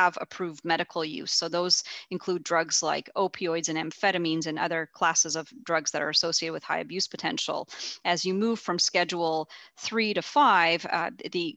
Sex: female